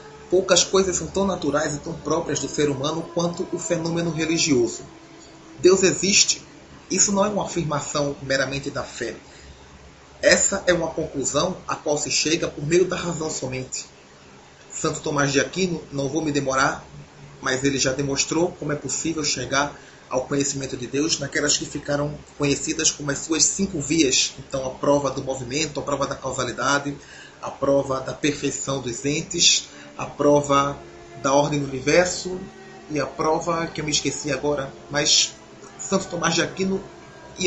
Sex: male